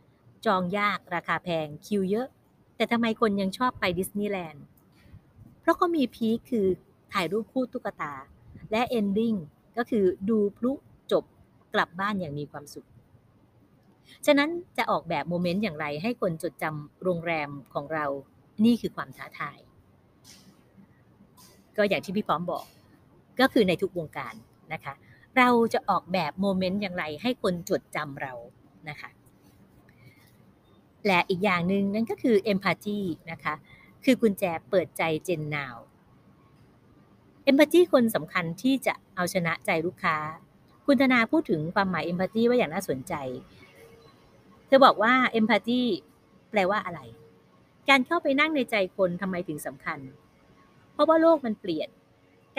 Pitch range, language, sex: 165-235 Hz, Thai, female